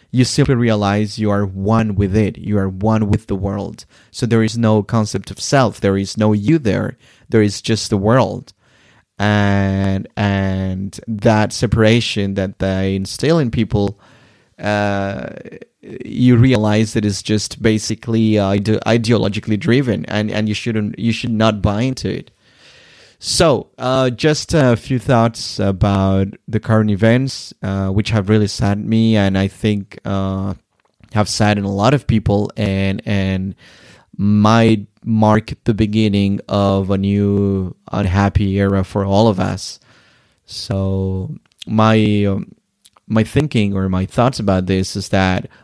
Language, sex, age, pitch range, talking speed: English, male, 20-39, 100-115 Hz, 150 wpm